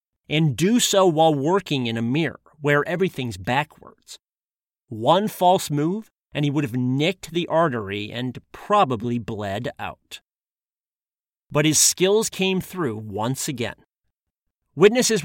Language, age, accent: English, 40-59, American